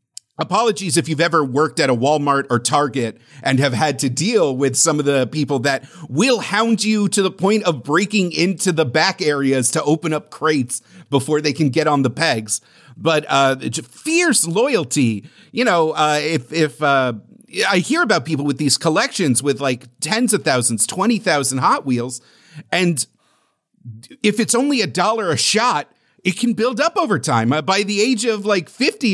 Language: English